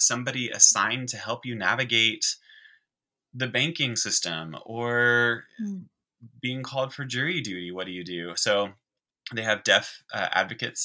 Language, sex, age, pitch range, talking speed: English, male, 20-39, 95-120 Hz, 140 wpm